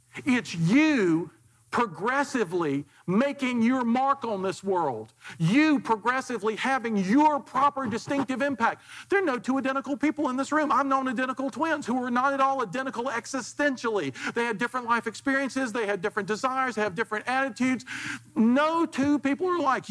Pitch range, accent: 190-260 Hz, American